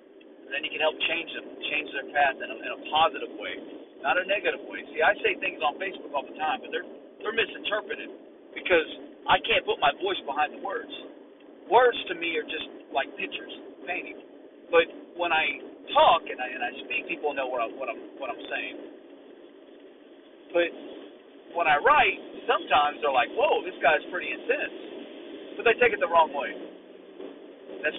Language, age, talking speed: English, 40-59, 190 wpm